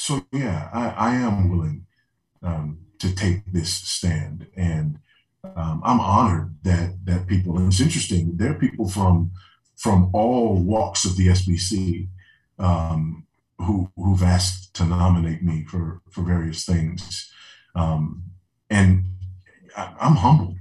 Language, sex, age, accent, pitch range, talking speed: English, male, 40-59, American, 85-105 Hz, 135 wpm